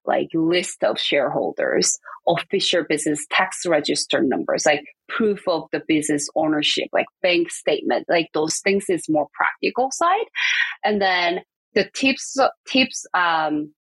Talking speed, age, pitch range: 135 wpm, 20-39, 165-225 Hz